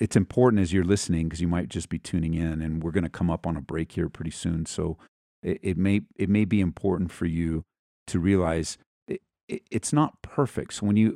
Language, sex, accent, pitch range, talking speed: English, male, American, 85-105 Hz, 225 wpm